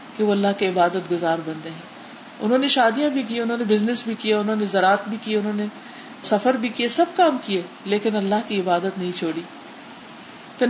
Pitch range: 180-230 Hz